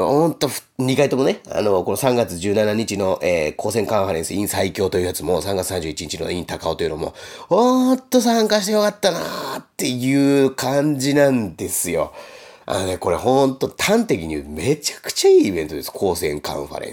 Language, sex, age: Japanese, male, 30-49